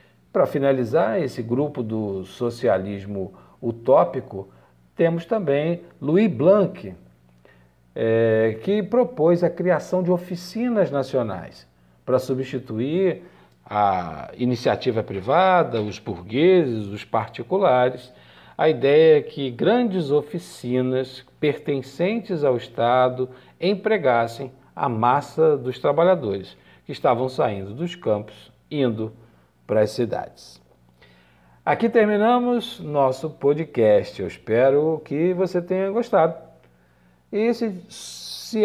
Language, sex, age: Portuguese, male, 50-69